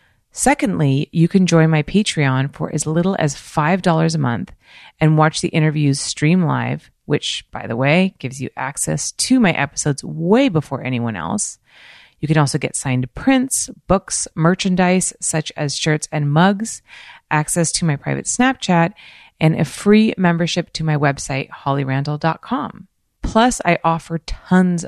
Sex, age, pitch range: female, 30-49, 145-185 Hz